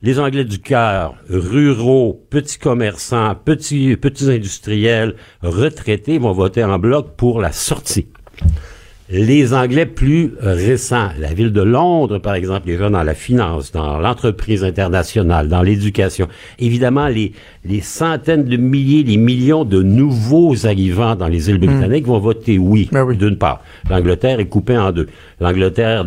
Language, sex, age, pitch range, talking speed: French, male, 60-79, 95-135 Hz, 145 wpm